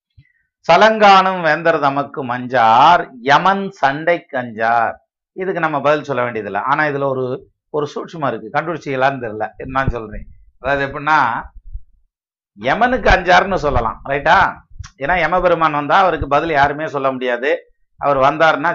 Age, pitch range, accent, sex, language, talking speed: 50-69, 135-170 Hz, native, male, Tamil, 125 wpm